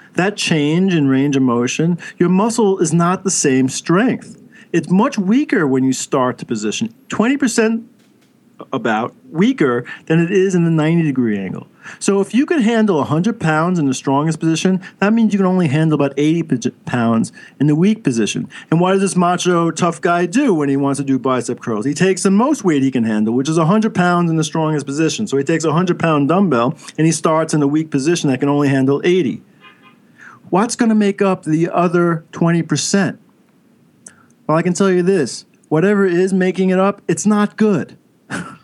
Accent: American